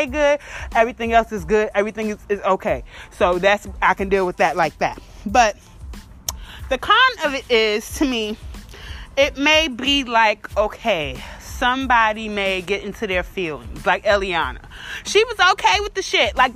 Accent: American